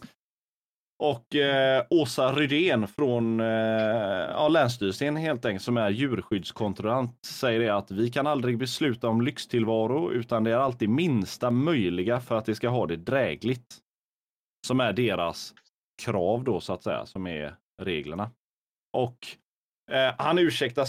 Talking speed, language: 145 wpm, Swedish